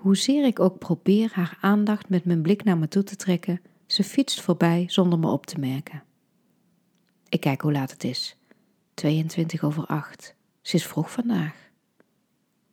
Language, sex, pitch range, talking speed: Dutch, female, 165-205 Hz, 165 wpm